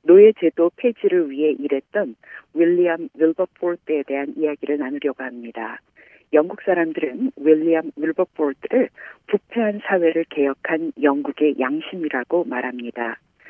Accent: native